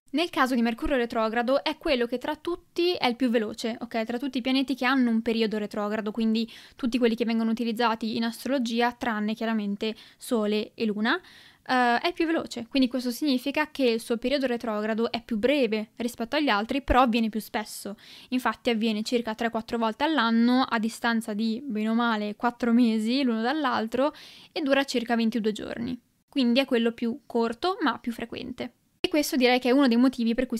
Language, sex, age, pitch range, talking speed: Italian, female, 10-29, 225-265 Hz, 190 wpm